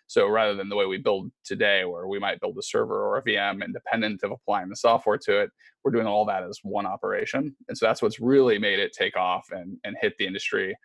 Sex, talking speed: male, 250 wpm